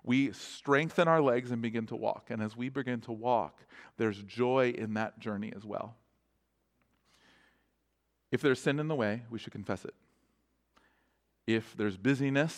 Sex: male